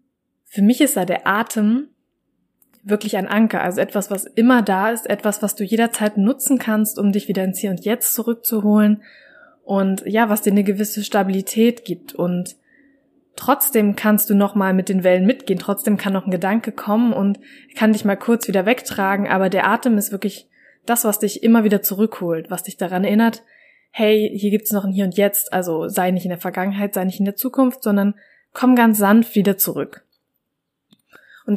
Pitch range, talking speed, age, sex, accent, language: 195-230 Hz, 190 wpm, 20-39, female, German, German